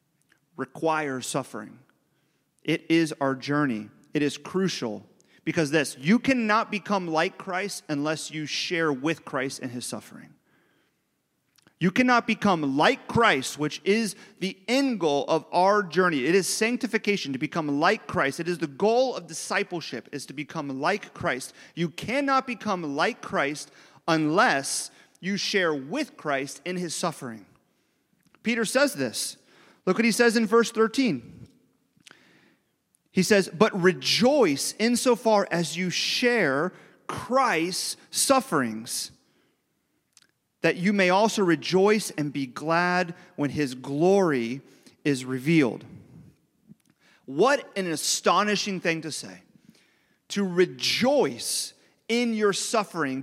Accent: American